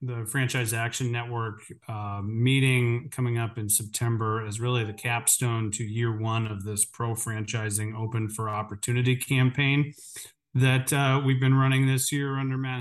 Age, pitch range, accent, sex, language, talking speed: 40-59, 110-130 Hz, American, male, English, 160 wpm